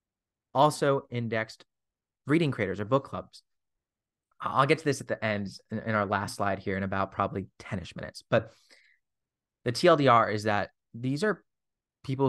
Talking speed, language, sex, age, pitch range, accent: 155 wpm, English, male, 30-49, 100-125 Hz, American